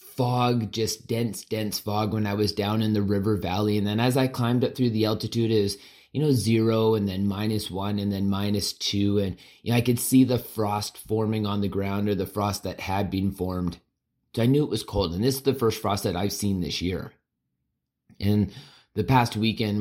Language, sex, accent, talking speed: English, male, American, 225 wpm